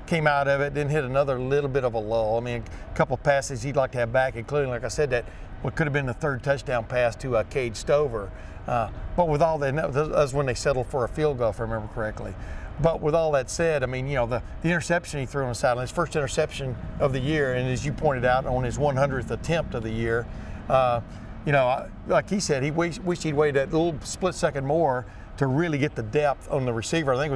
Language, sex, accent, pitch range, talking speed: English, male, American, 120-150 Hz, 265 wpm